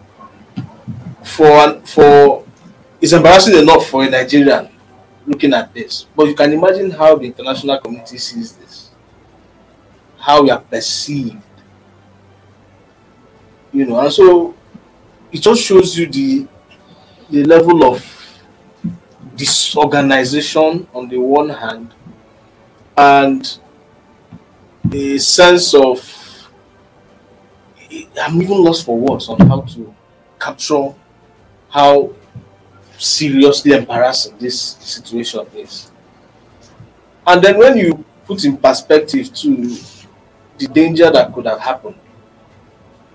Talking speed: 105 wpm